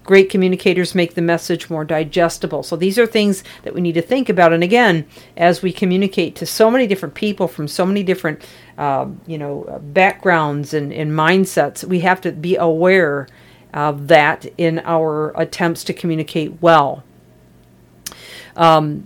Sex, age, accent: female, 50-69, American